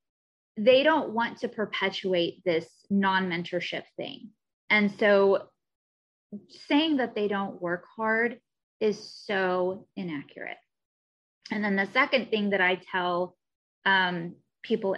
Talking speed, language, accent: 115 wpm, English, American